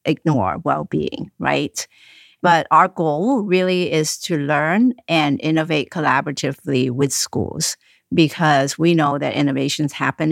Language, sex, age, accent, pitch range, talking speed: English, female, 50-69, American, 140-160 Hz, 120 wpm